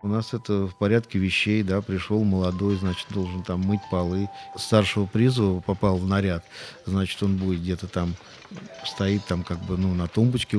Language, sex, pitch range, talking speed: Russian, male, 90-105 Hz, 175 wpm